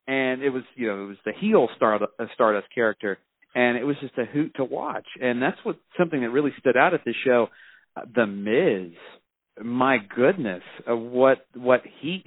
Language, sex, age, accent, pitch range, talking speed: English, male, 40-59, American, 115-145 Hz, 190 wpm